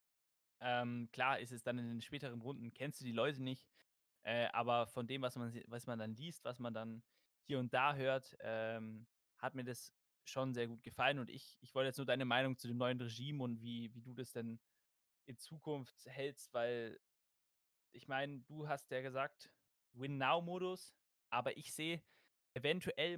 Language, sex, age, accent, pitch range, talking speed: German, male, 20-39, German, 125-150 Hz, 190 wpm